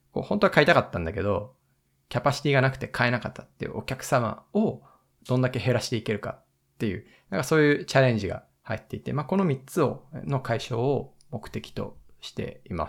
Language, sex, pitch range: Japanese, male, 110-150 Hz